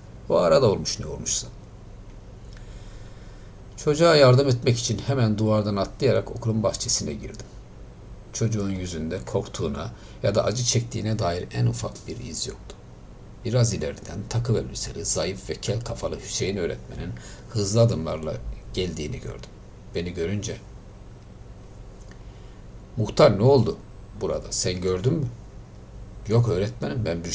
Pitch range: 95-115 Hz